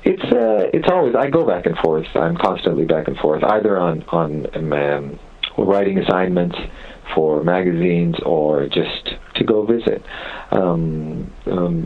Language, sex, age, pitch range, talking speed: English, male, 50-69, 80-95 Hz, 145 wpm